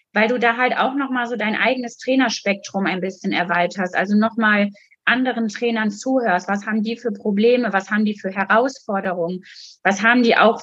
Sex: female